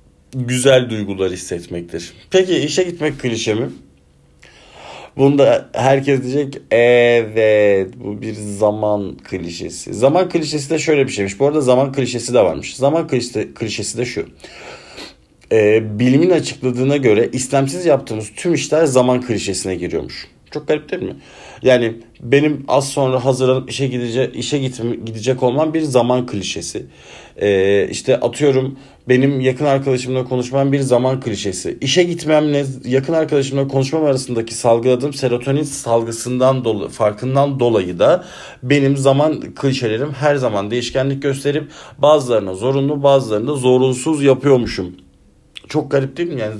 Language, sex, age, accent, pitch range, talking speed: Turkish, male, 50-69, native, 115-140 Hz, 130 wpm